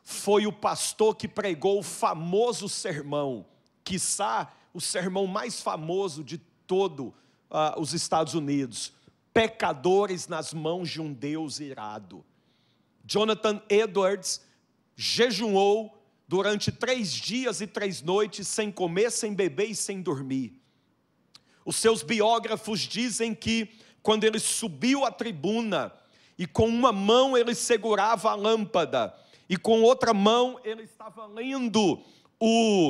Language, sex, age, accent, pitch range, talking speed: Portuguese, male, 50-69, Brazilian, 175-225 Hz, 120 wpm